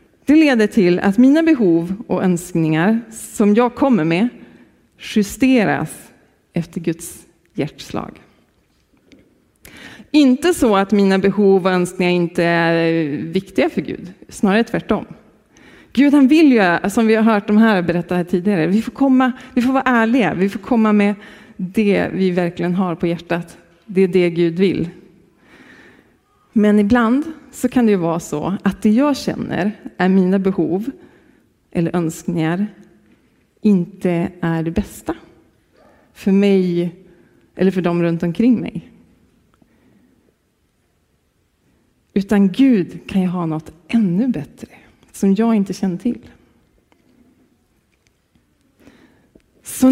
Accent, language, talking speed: native, Swedish, 130 wpm